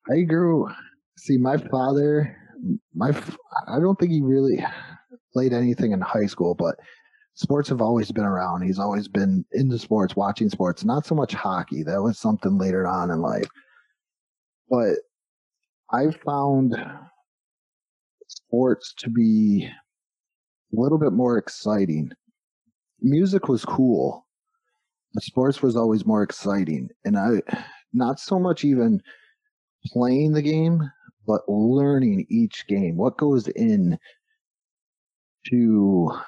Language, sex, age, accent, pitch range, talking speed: English, male, 30-49, American, 110-175 Hz, 125 wpm